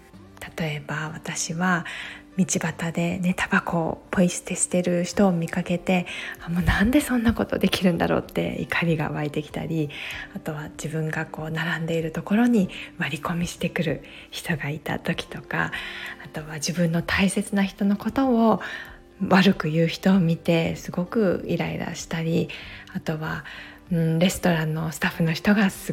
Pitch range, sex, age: 165-195 Hz, female, 20-39